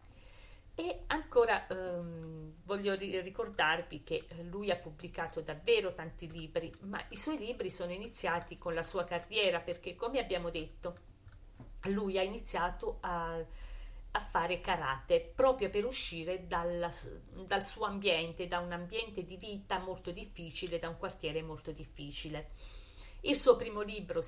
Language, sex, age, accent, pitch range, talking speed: Italian, female, 40-59, native, 165-210 Hz, 140 wpm